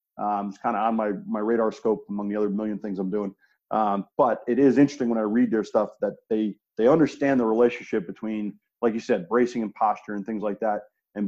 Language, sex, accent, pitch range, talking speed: English, male, American, 105-130 Hz, 235 wpm